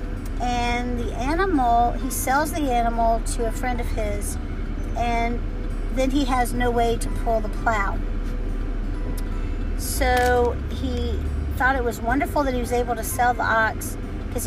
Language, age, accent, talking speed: English, 50-69, American, 155 wpm